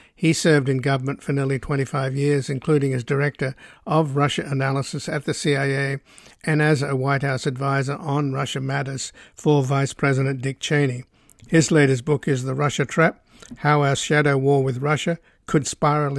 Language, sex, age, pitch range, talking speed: English, male, 60-79, 135-150 Hz, 170 wpm